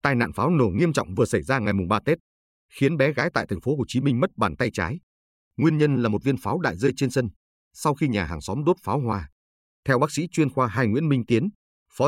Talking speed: 270 wpm